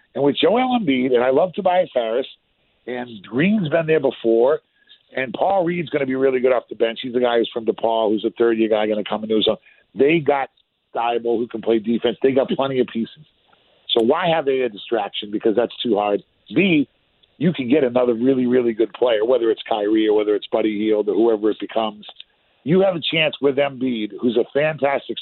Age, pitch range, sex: 40-59, 115-155 Hz, male